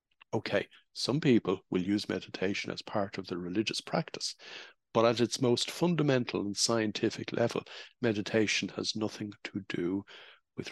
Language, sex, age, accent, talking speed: English, male, 60-79, Irish, 145 wpm